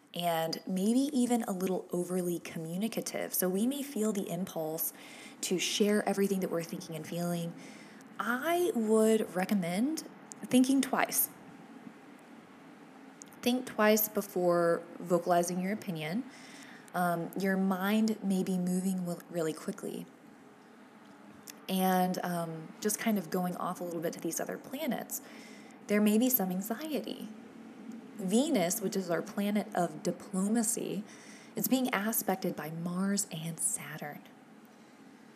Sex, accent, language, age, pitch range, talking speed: female, American, English, 20-39, 175-235 Hz, 125 wpm